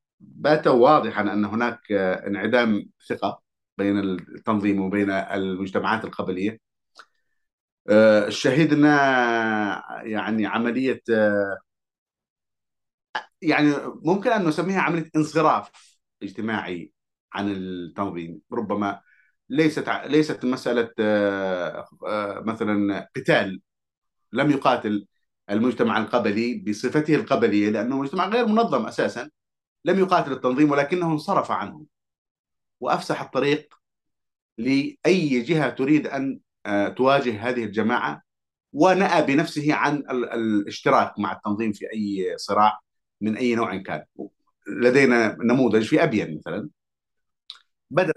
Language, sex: Arabic, male